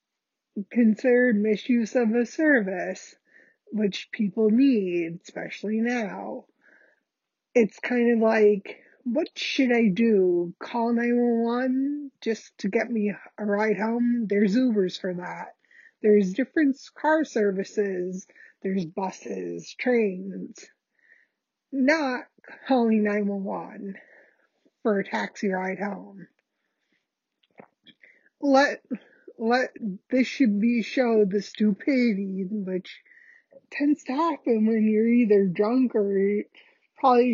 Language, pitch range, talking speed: English, 205-255 Hz, 105 wpm